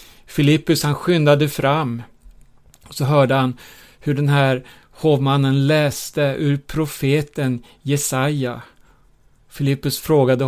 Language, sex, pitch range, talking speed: Swedish, male, 130-155 Hz, 105 wpm